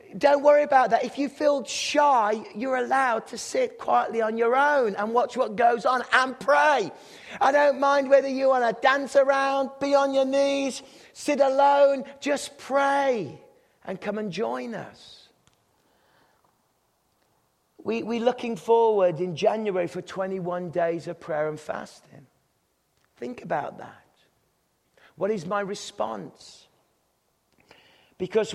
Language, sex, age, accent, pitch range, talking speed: English, male, 40-59, British, 180-245 Hz, 135 wpm